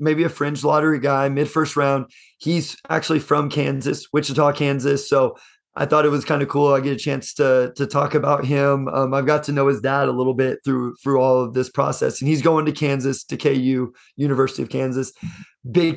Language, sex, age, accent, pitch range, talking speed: English, male, 30-49, American, 135-150 Hz, 220 wpm